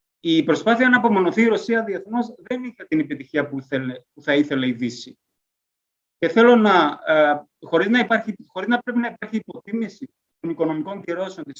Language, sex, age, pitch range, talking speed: Greek, male, 30-49, 150-220 Hz, 165 wpm